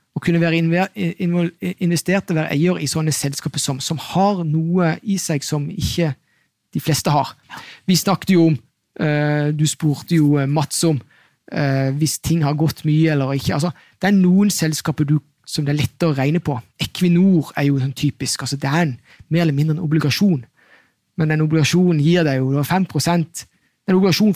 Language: English